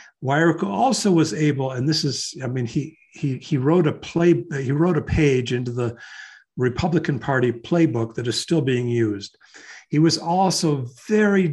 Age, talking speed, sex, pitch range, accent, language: 60-79, 170 wpm, male, 140-180 Hz, American, English